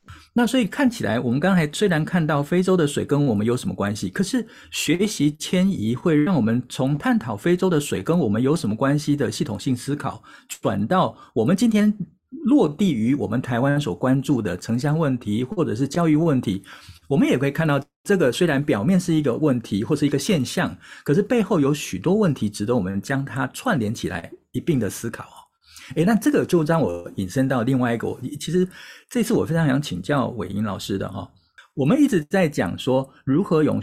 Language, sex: Chinese, male